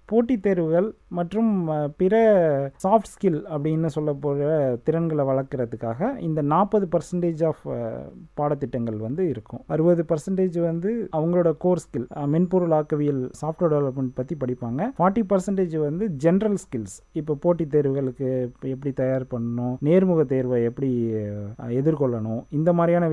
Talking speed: 115 wpm